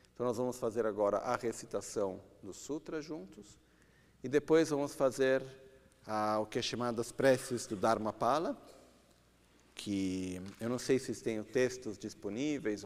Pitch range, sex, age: 110-140 Hz, male, 50-69